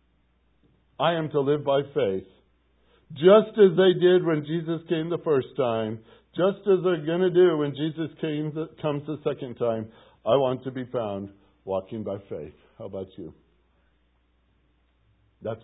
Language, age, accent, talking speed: English, 60-79, American, 155 wpm